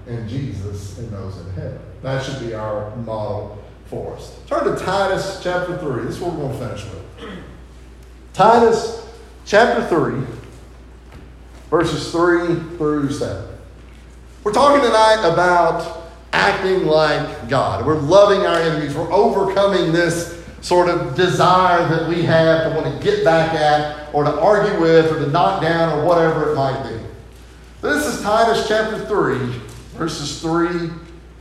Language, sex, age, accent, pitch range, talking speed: English, male, 50-69, American, 120-185 Hz, 150 wpm